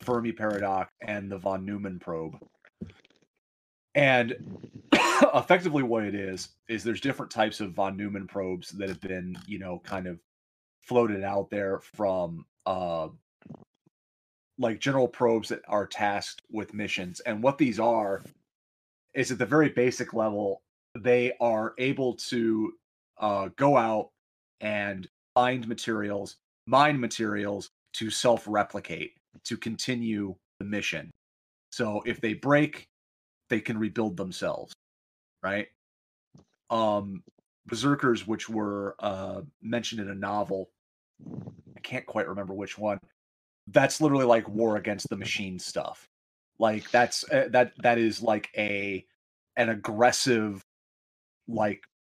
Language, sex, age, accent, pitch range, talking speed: English, male, 30-49, American, 95-115 Hz, 130 wpm